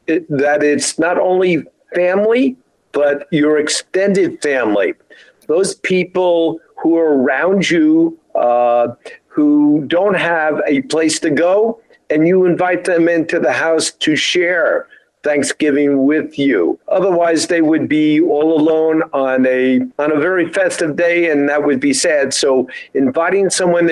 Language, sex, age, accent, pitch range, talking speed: English, male, 50-69, American, 140-175 Hz, 140 wpm